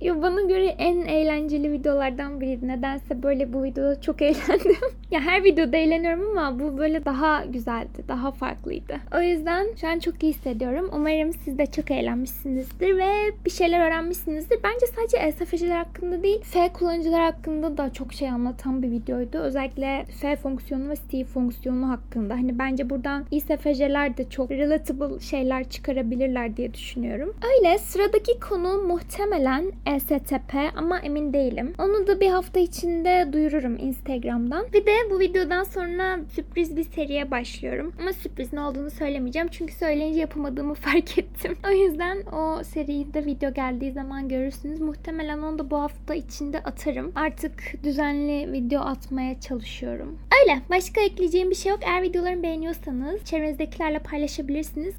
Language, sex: Turkish, female